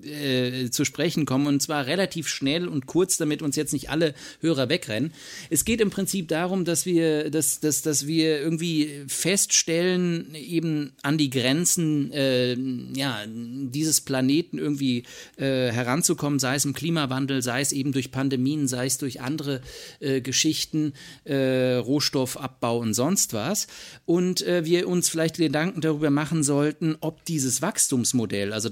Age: 50-69